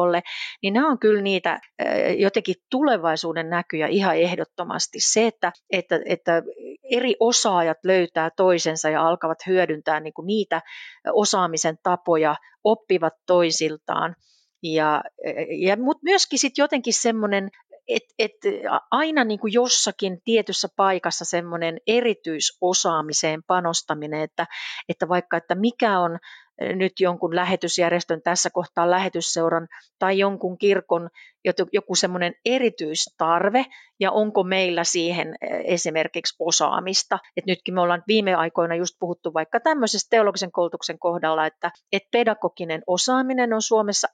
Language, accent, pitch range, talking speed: Finnish, native, 170-210 Hz, 115 wpm